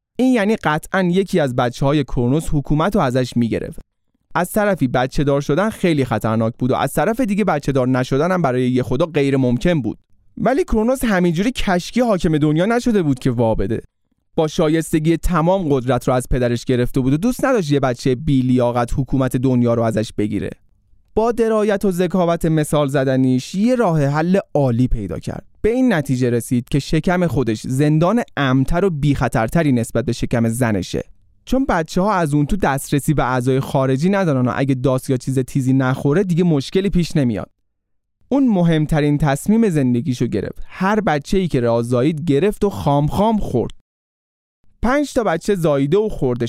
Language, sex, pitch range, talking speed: Persian, male, 125-185 Hz, 175 wpm